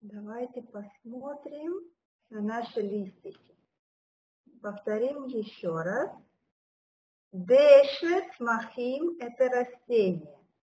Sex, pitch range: female, 205-310 Hz